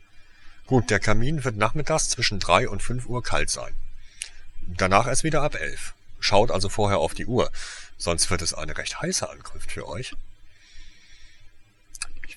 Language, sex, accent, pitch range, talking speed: German, male, German, 80-100 Hz, 160 wpm